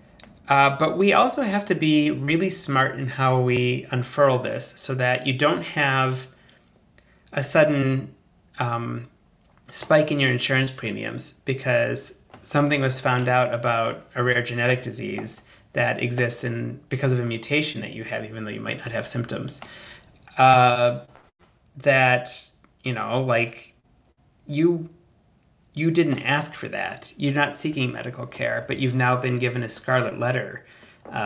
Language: English